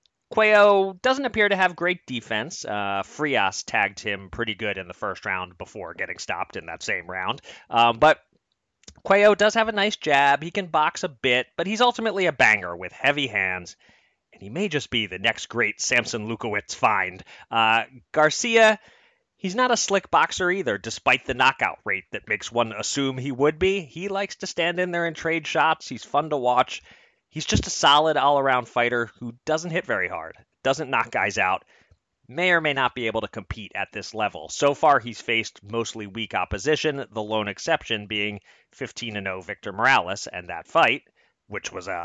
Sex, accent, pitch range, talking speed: male, American, 110-175 Hz, 190 wpm